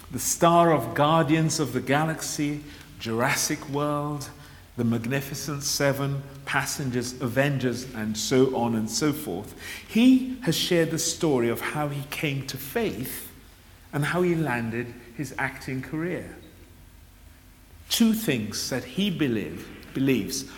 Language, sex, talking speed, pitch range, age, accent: English, male, 125 wpm, 115-155 Hz, 50-69, British